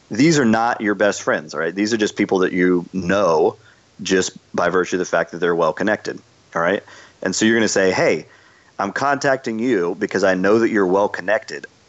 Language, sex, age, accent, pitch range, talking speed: English, male, 40-59, American, 90-110 Hz, 205 wpm